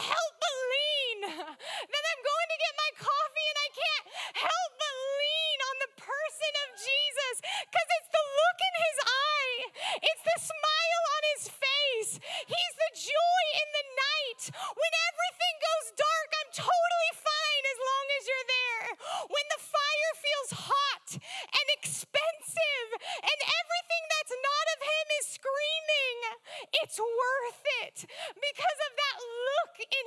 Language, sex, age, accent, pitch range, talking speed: English, female, 30-49, American, 290-345 Hz, 150 wpm